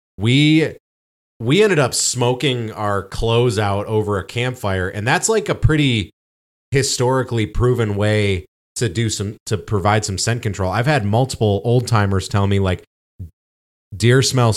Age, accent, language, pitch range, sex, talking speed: 30-49, American, English, 95-120 Hz, male, 150 wpm